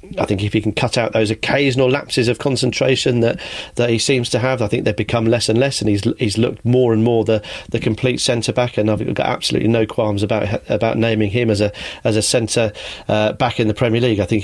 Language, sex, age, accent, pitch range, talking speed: English, male, 40-59, British, 110-130 Hz, 240 wpm